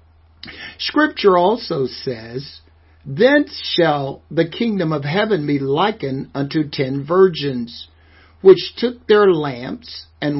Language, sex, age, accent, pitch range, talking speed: English, male, 60-79, American, 125-185 Hz, 110 wpm